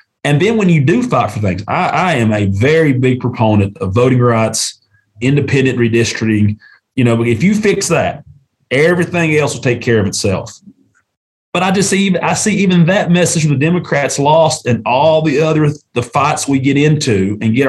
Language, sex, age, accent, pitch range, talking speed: English, male, 30-49, American, 110-150 Hz, 195 wpm